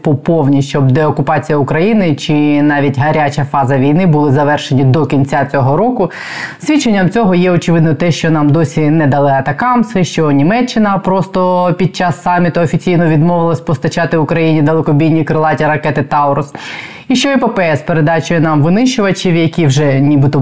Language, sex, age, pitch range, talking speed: Ukrainian, female, 20-39, 150-190 Hz, 150 wpm